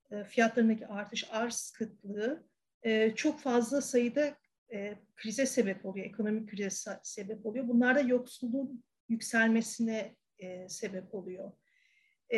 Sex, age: female, 40-59